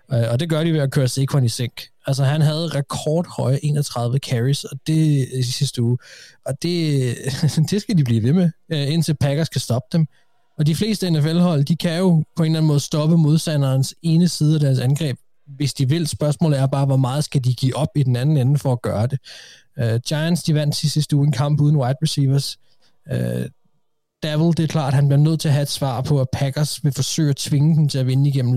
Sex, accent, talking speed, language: male, native, 225 wpm, Danish